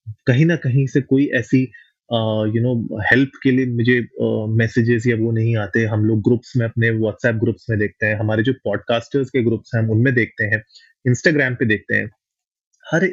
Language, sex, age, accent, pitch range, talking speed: Hindi, male, 30-49, native, 115-150 Hz, 195 wpm